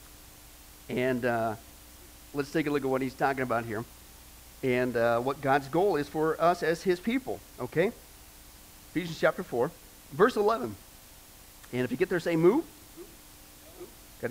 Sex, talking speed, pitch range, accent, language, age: male, 155 wpm, 140-205 Hz, American, English, 40-59